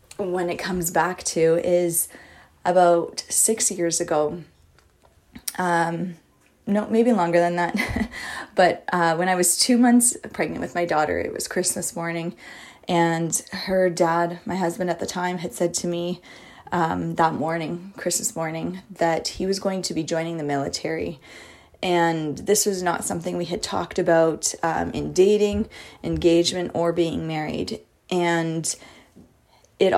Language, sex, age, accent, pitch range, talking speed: English, female, 20-39, American, 165-180 Hz, 150 wpm